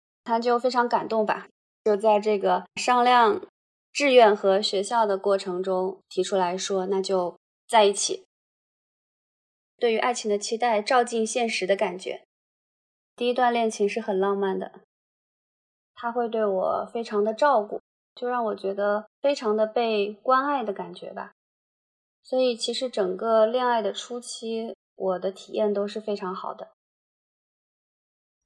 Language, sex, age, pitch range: Chinese, female, 20-39, 200-240 Hz